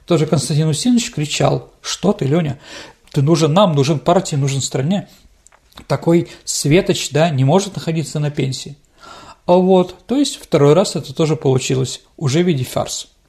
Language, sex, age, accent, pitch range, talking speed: Russian, male, 40-59, native, 145-195 Hz, 160 wpm